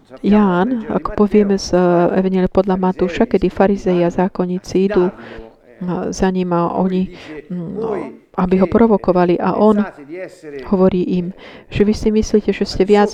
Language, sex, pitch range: Slovak, female, 180-215 Hz